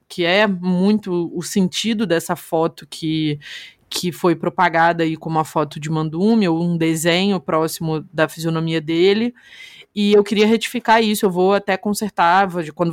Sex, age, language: female, 20-39, Portuguese